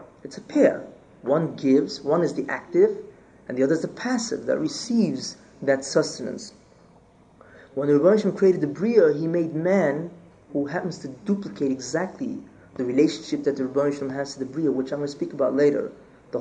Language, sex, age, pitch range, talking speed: English, male, 30-49, 145-210 Hz, 185 wpm